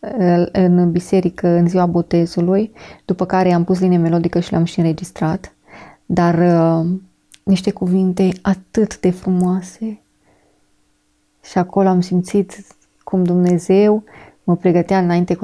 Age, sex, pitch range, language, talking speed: 20-39, female, 175-195 Hz, Romanian, 125 wpm